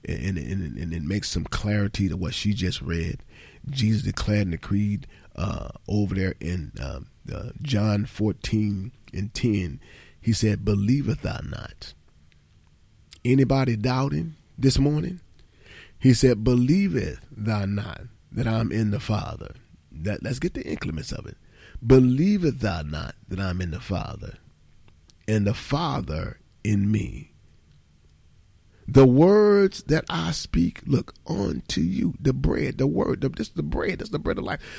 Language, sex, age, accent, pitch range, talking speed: English, male, 40-59, American, 95-135 Hz, 155 wpm